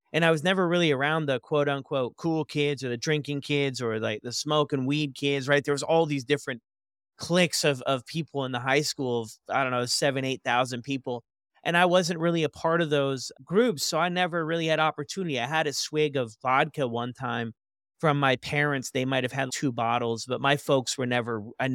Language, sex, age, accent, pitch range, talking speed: English, male, 30-49, American, 120-155 Hz, 220 wpm